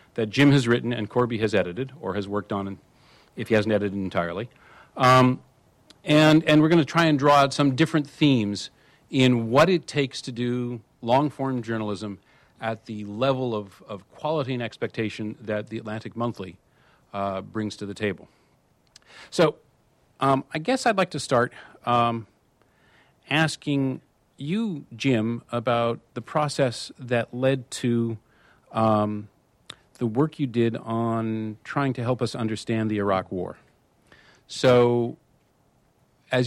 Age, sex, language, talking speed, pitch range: 40-59, male, English, 145 wpm, 110-135 Hz